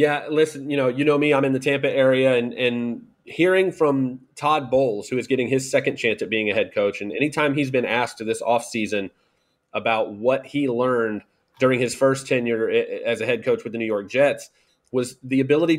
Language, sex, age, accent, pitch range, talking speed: English, male, 30-49, American, 125-150 Hz, 220 wpm